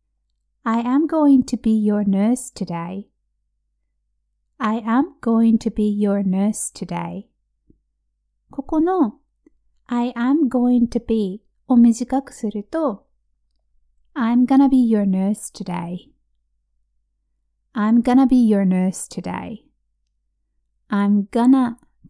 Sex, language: female, Japanese